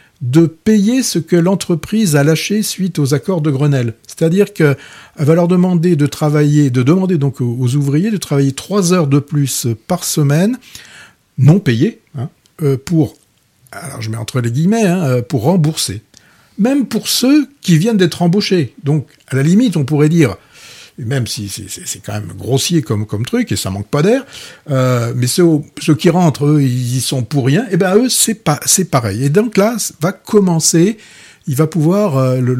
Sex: male